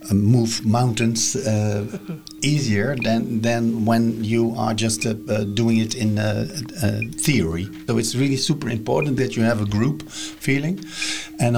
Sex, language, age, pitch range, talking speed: male, Bulgarian, 50-69, 105-135 Hz, 160 wpm